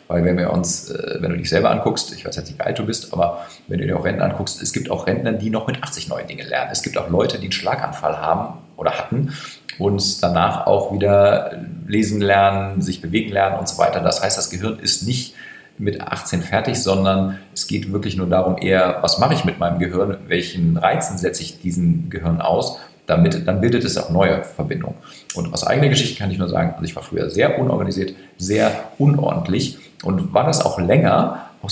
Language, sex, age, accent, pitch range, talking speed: English, male, 40-59, German, 95-105 Hz, 220 wpm